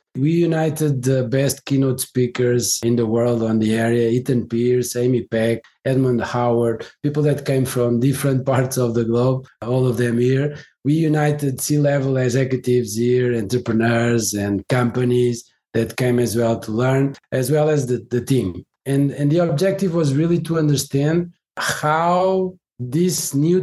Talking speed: 155 wpm